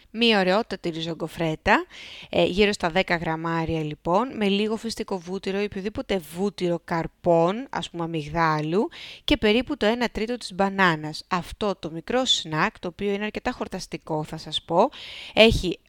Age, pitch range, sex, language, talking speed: 20-39, 170-220 Hz, female, Greek, 150 wpm